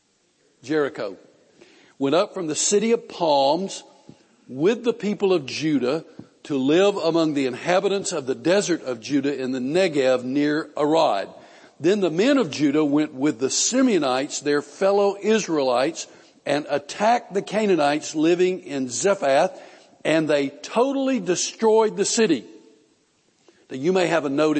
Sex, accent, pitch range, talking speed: male, American, 145-195 Hz, 145 wpm